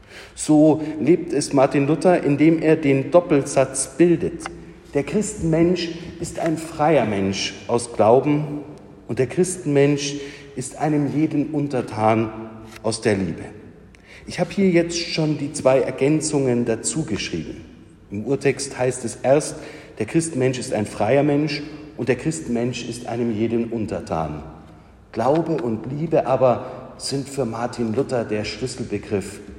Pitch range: 105-150 Hz